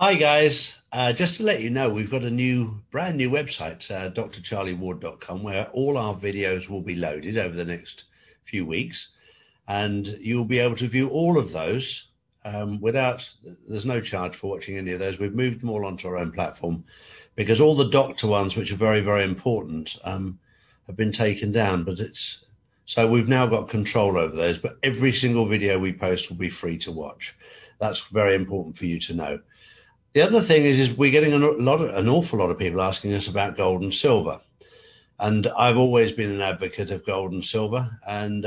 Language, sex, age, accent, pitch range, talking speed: English, male, 50-69, British, 95-125 Hz, 200 wpm